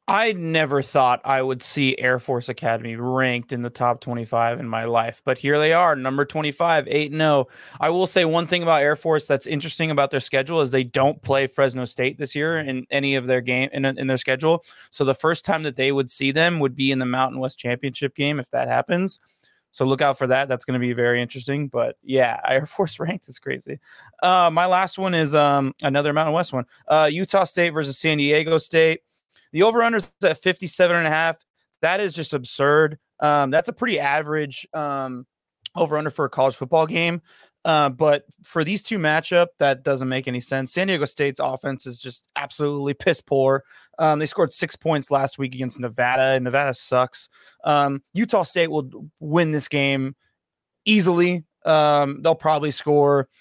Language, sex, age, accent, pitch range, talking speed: English, male, 20-39, American, 130-160 Hz, 200 wpm